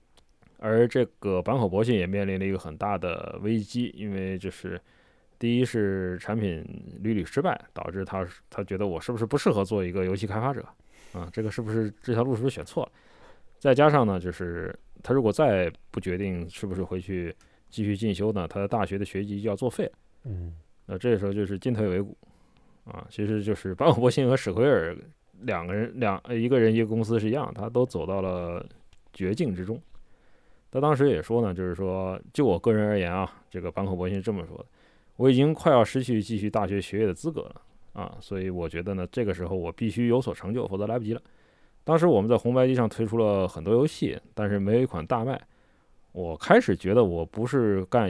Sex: male